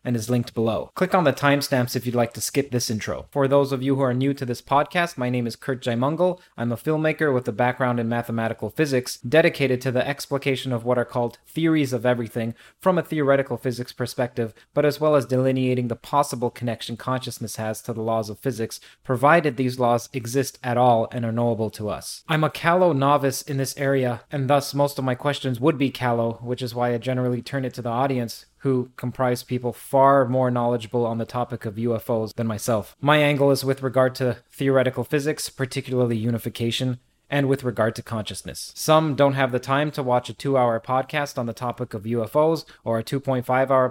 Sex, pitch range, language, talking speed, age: male, 120-135 Hz, English, 210 wpm, 30-49